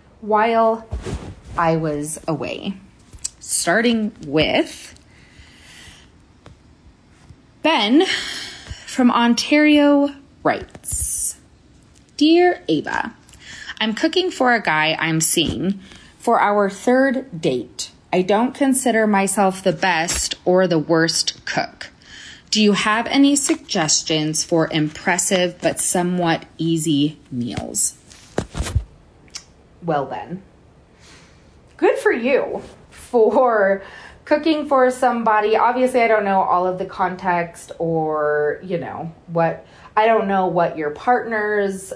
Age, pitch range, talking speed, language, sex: 20-39, 165-245 Hz, 100 wpm, English, female